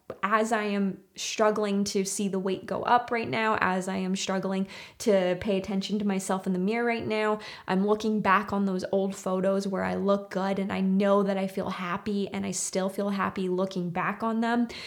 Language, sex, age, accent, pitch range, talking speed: English, female, 20-39, American, 190-210 Hz, 215 wpm